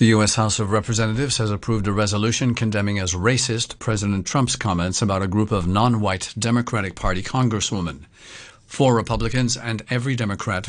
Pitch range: 105-155 Hz